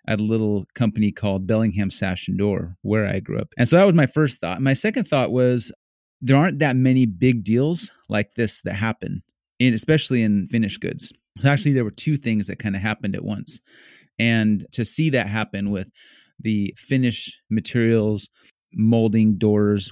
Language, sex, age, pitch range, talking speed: English, male, 30-49, 105-130 Hz, 185 wpm